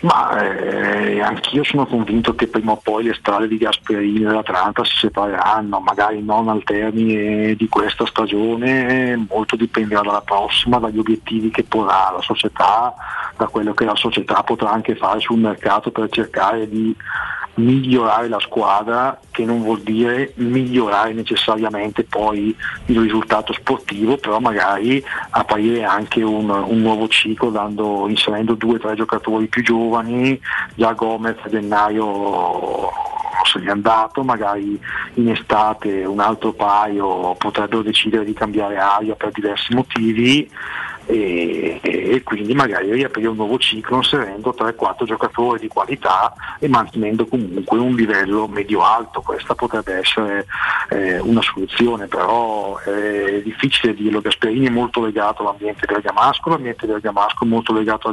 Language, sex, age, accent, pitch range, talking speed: Italian, male, 40-59, native, 105-115 Hz, 145 wpm